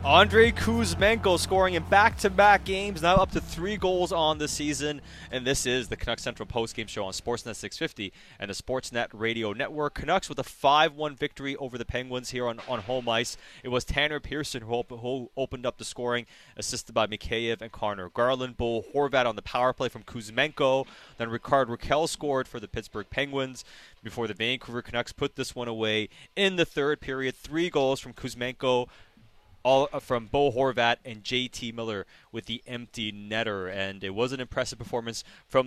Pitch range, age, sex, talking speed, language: 115-140 Hz, 20-39, male, 185 wpm, English